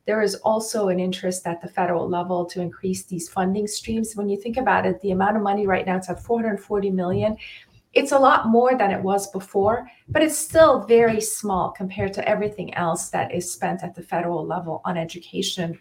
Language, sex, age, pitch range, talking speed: English, female, 30-49, 185-225 Hz, 210 wpm